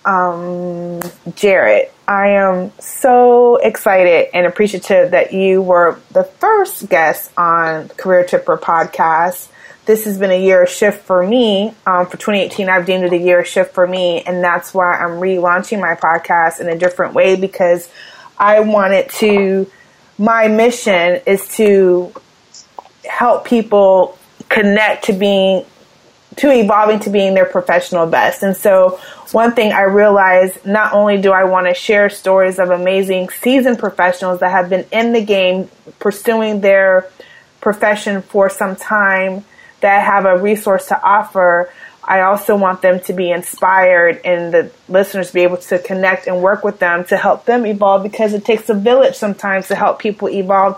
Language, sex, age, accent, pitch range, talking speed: English, female, 30-49, American, 180-210 Hz, 165 wpm